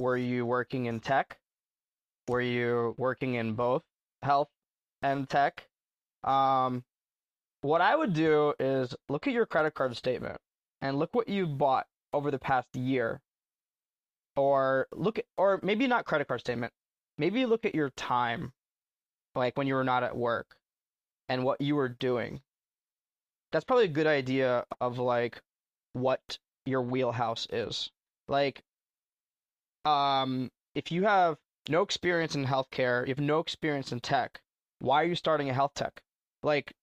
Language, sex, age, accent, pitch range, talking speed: English, male, 20-39, American, 125-155 Hz, 155 wpm